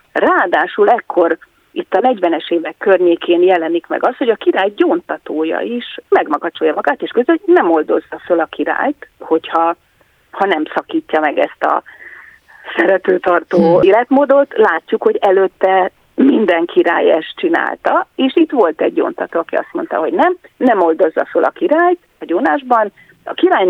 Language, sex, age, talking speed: Hungarian, female, 40-59, 150 wpm